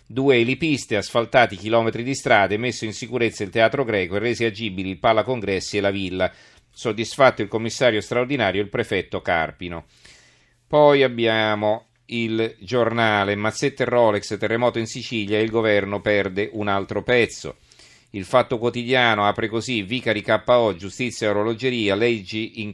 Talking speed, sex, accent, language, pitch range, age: 150 wpm, male, native, Italian, 105-120 Hz, 40-59